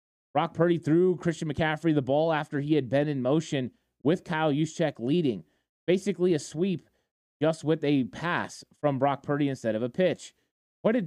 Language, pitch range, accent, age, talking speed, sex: English, 140-170 Hz, American, 20-39, 180 wpm, male